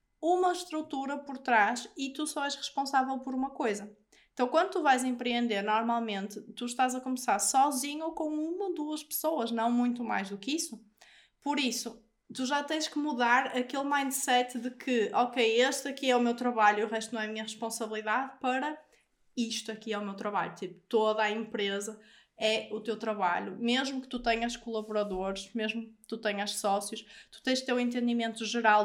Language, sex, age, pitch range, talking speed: Portuguese, female, 20-39, 220-270 Hz, 190 wpm